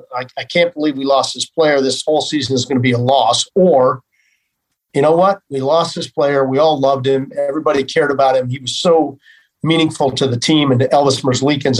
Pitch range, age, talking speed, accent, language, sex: 140-205 Hz, 50-69, 220 wpm, American, English, male